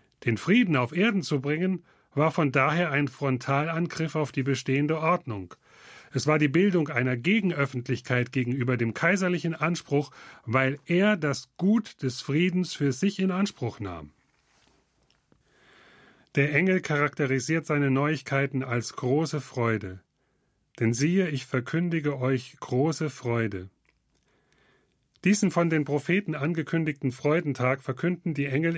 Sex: male